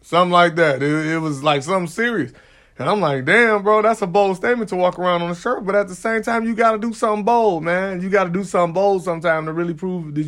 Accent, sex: American, male